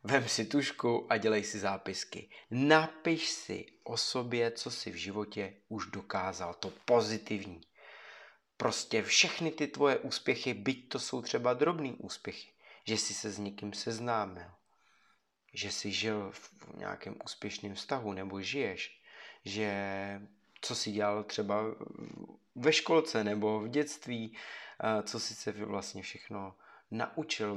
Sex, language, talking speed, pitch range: male, Czech, 135 wpm, 100-120 Hz